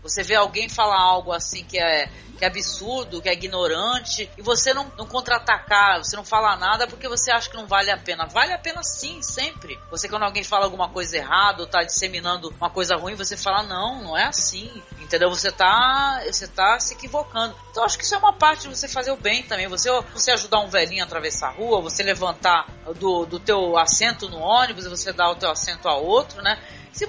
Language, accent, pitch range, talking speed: Portuguese, Brazilian, 185-245 Hz, 225 wpm